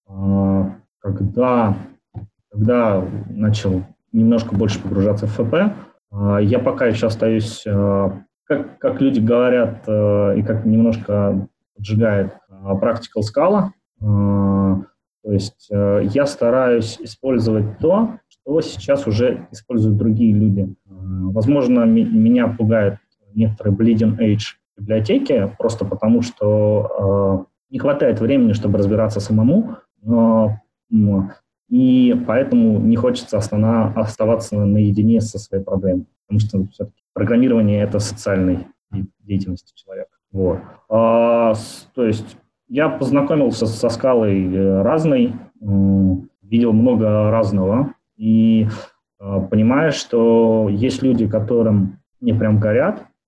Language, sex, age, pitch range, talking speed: Russian, male, 20-39, 100-115 Hz, 100 wpm